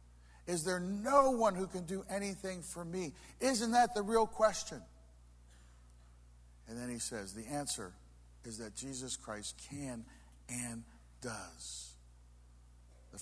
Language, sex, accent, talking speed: English, male, American, 130 wpm